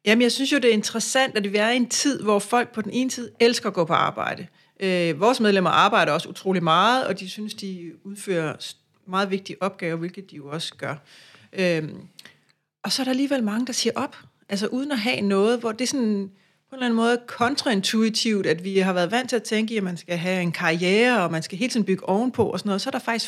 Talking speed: 250 wpm